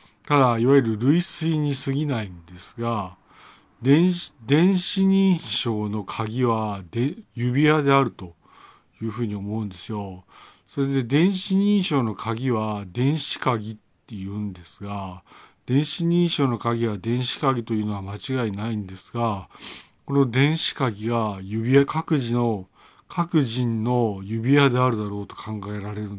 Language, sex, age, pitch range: Japanese, male, 50-69, 105-140 Hz